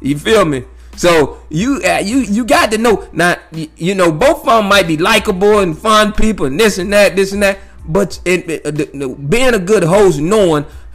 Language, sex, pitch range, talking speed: English, male, 155-215 Hz, 225 wpm